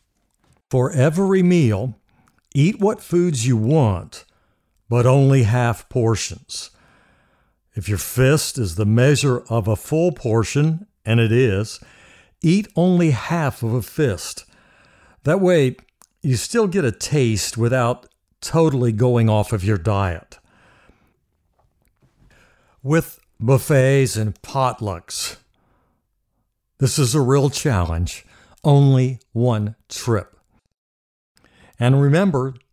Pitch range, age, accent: 110-140 Hz, 60-79, American